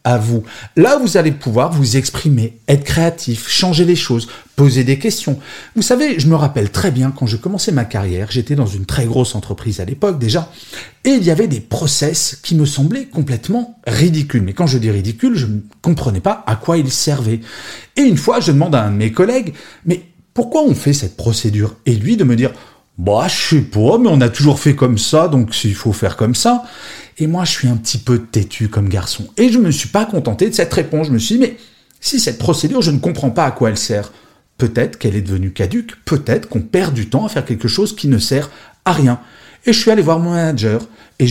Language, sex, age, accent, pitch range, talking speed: French, male, 40-59, French, 115-175 Hz, 235 wpm